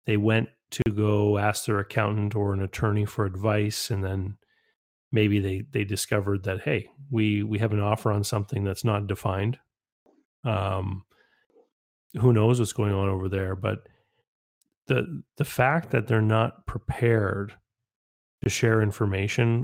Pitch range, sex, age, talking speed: 105-120 Hz, male, 30-49, 150 wpm